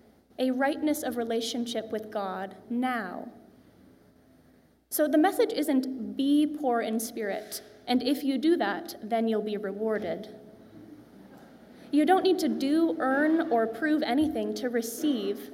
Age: 20-39